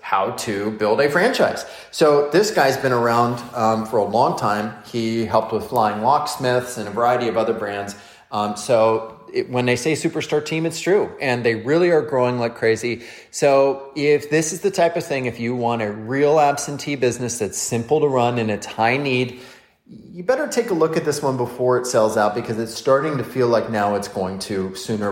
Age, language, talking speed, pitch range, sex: 30-49, English, 210 wpm, 110-150 Hz, male